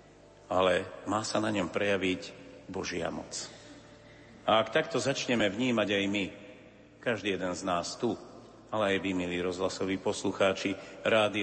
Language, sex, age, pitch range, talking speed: Slovak, male, 50-69, 110-155 Hz, 140 wpm